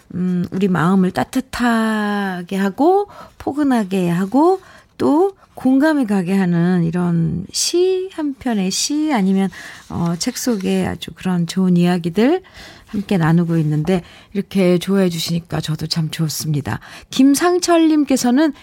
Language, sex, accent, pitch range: Korean, female, native, 175-260 Hz